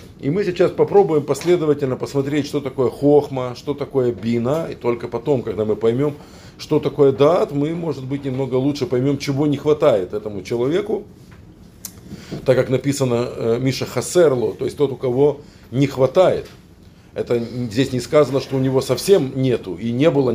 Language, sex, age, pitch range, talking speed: Russian, male, 50-69, 115-145 Hz, 165 wpm